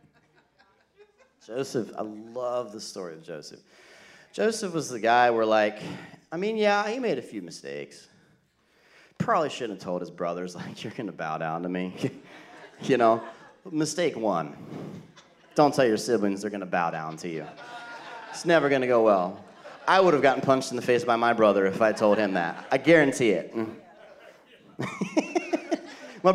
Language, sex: English, male